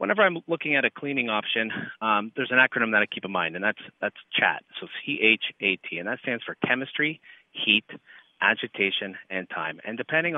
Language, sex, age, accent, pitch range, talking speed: English, male, 30-49, American, 95-130 Hz, 210 wpm